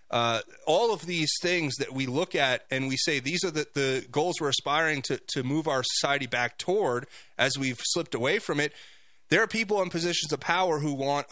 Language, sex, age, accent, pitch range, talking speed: English, male, 30-49, American, 130-170 Hz, 215 wpm